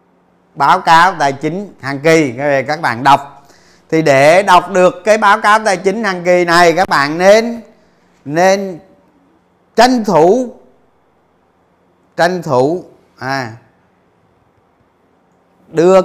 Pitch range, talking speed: 145-205 Hz, 115 wpm